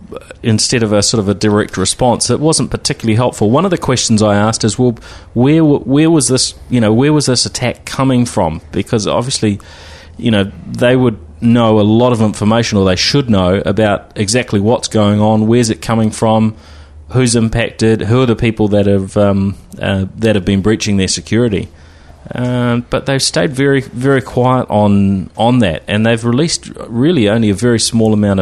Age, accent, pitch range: 30-49, Australian, 95-115 Hz